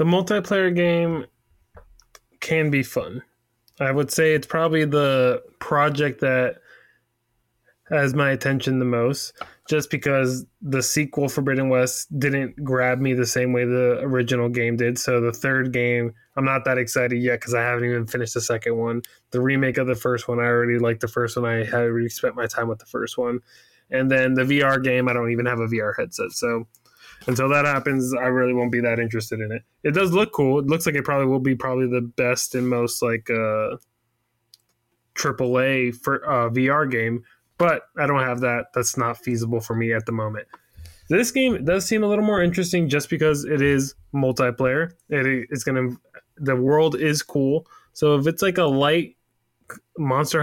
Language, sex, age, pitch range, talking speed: English, male, 20-39, 120-145 Hz, 195 wpm